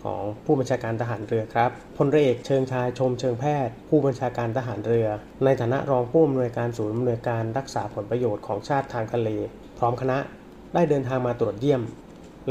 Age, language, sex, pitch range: 30-49, Thai, male, 115-145 Hz